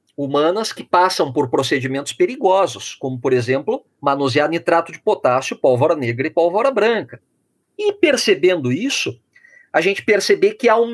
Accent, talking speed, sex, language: Brazilian, 150 wpm, male, Portuguese